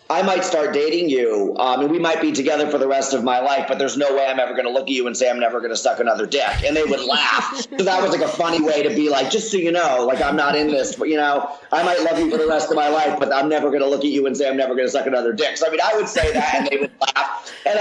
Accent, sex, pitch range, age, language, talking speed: American, male, 135-165 Hz, 40-59, English, 345 wpm